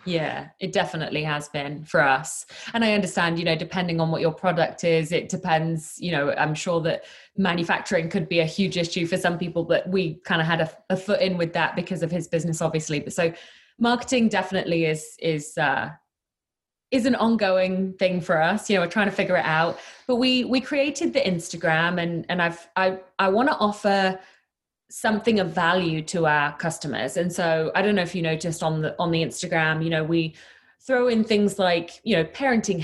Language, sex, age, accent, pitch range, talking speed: English, female, 20-39, British, 165-200 Hz, 210 wpm